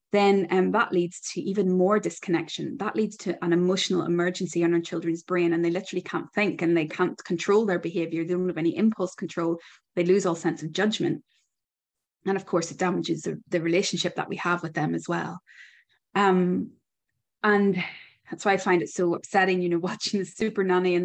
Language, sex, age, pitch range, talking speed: English, female, 20-39, 170-190 Hz, 205 wpm